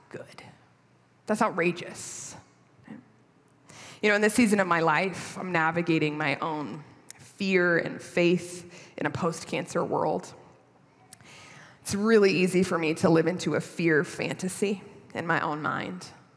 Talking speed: 135 wpm